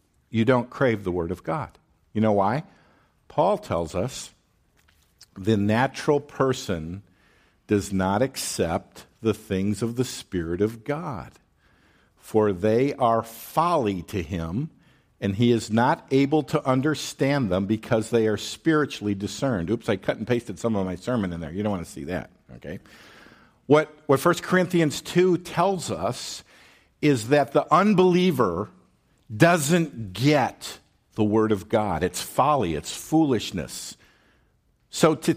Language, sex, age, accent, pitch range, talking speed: English, male, 50-69, American, 110-155 Hz, 145 wpm